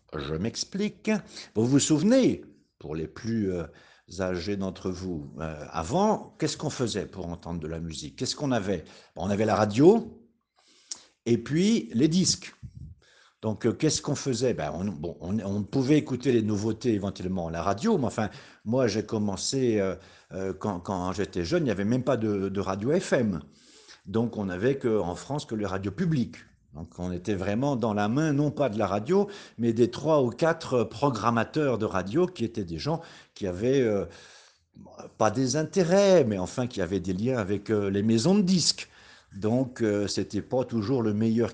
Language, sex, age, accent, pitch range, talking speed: French, male, 50-69, French, 100-145 Hz, 180 wpm